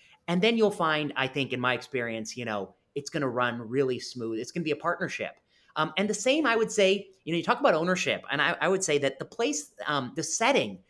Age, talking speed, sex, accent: 30-49, 260 wpm, male, American